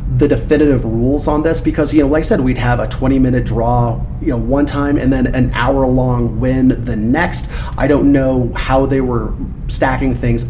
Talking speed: 210 wpm